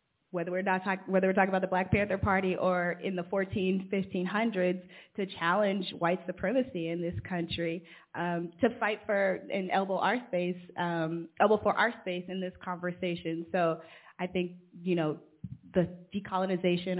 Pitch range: 170-190 Hz